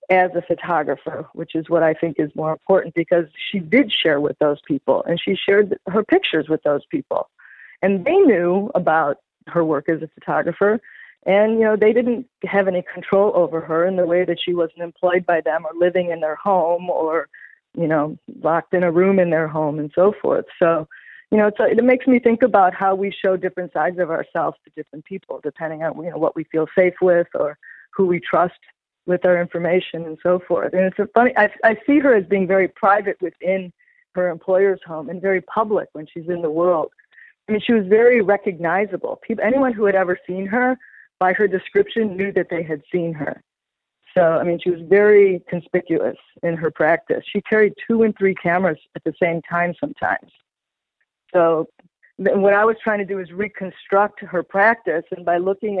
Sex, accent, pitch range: female, American, 170-205 Hz